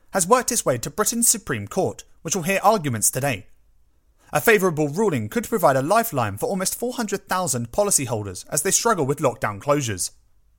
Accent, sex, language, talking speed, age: British, male, English, 170 wpm, 30-49